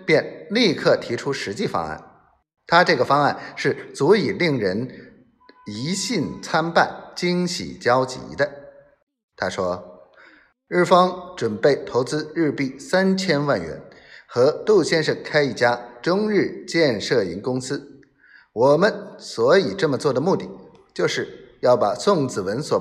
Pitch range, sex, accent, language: 140-210 Hz, male, native, Chinese